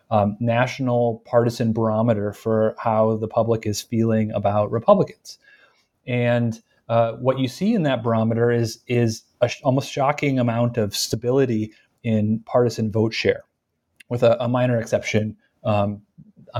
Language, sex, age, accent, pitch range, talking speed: English, male, 30-49, American, 110-125 Hz, 140 wpm